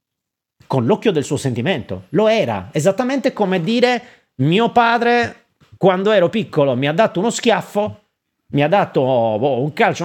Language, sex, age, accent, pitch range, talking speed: Italian, male, 40-59, native, 130-215 Hz, 150 wpm